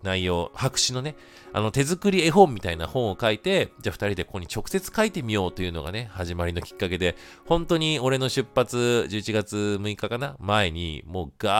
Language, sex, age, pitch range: Japanese, male, 40-59, 90-125 Hz